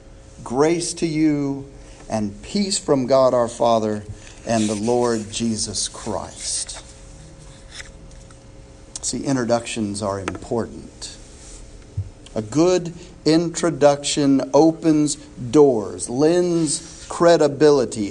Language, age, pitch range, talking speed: English, 50-69, 110-155 Hz, 85 wpm